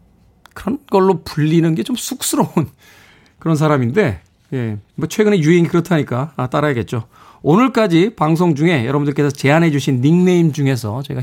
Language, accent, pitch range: Korean, native, 110-170 Hz